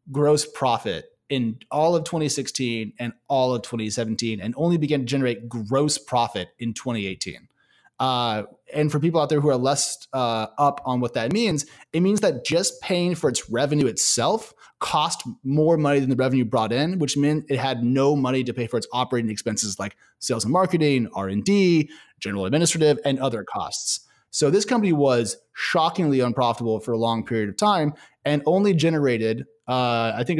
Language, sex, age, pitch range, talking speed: English, male, 30-49, 115-150 Hz, 180 wpm